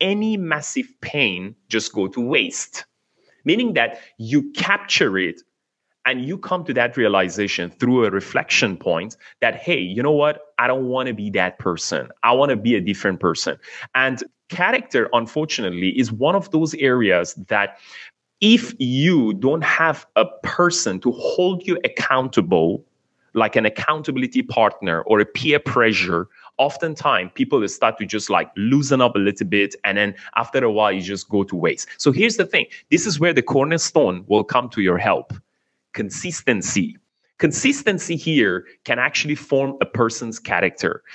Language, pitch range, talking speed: English, 105-165 Hz, 165 wpm